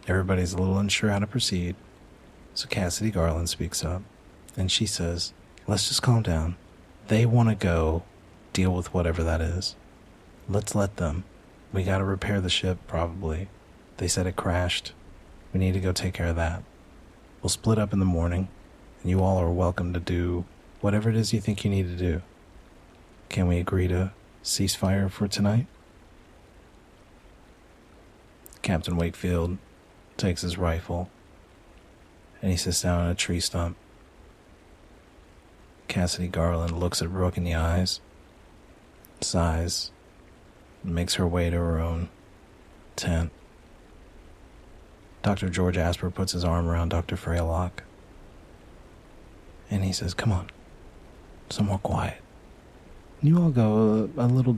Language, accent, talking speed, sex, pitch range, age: English, American, 145 wpm, male, 85-100 Hz, 40-59